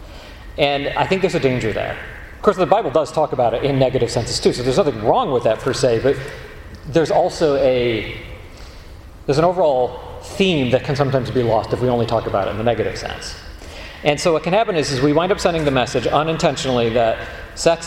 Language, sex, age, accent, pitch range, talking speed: English, male, 40-59, American, 110-165 Hz, 220 wpm